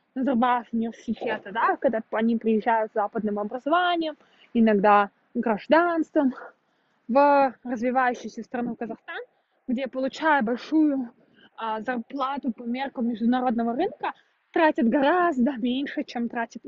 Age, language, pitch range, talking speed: 20-39, Russian, 240-300 Hz, 105 wpm